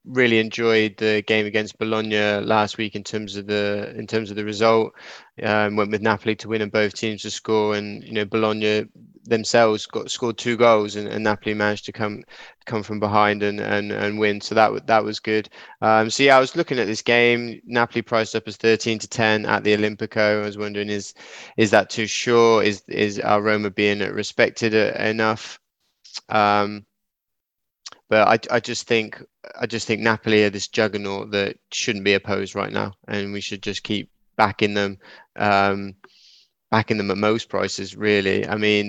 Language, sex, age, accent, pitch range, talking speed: English, male, 20-39, British, 105-110 Hz, 195 wpm